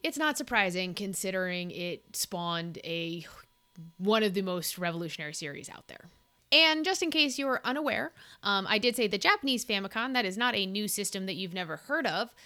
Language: English